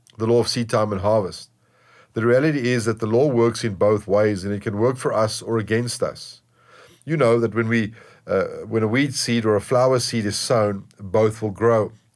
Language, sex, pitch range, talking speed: English, male, 110-125 Hz, 220 wpm